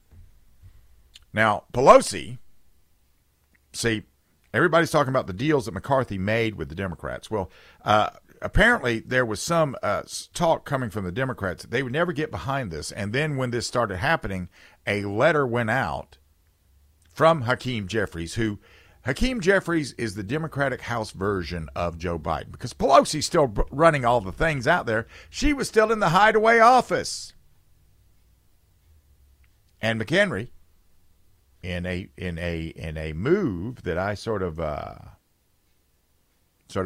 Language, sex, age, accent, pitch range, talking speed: English, male, 50-69, American, 85-130 Hz, 145 wpm